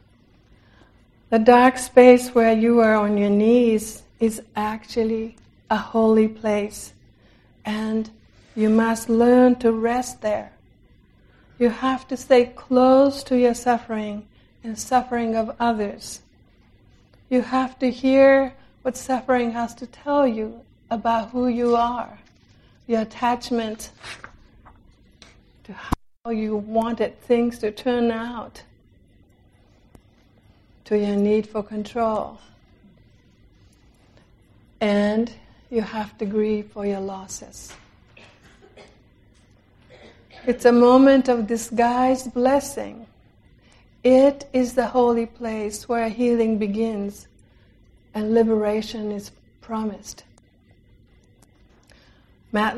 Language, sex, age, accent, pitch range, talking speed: English, female, 60-79, American, 205-240 Hz, 100 wpm